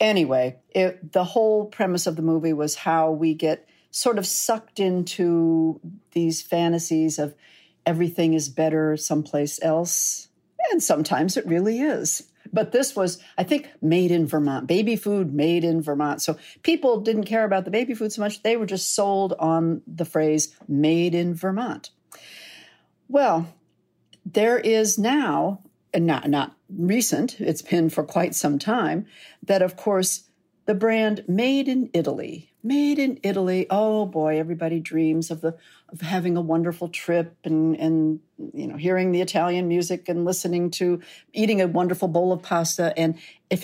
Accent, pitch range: American, 160-210 Hz